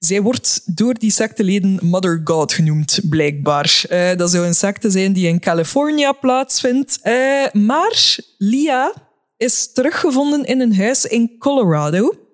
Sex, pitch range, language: female, 175-245 Hz, Dutch